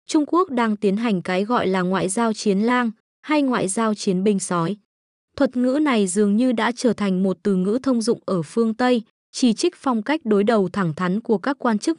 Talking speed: 230 wpm